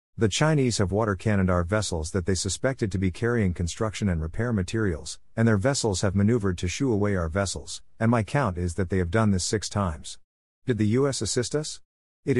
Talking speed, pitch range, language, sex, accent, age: 215 wpm, 90-115 Hz, English, male, American, 50-69